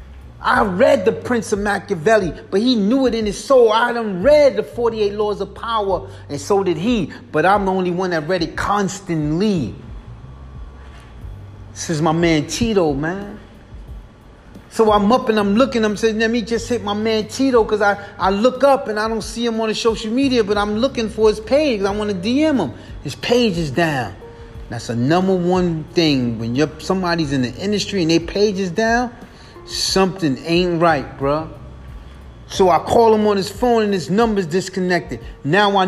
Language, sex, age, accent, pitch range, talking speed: English, male, 30-49, American, 145-215 Hz, 195 wpm